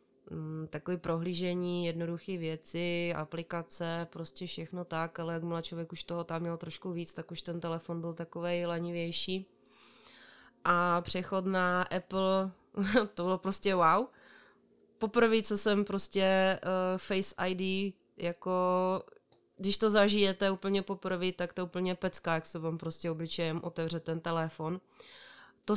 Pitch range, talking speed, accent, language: 165-190 Hz, 135 wpm, native, Czech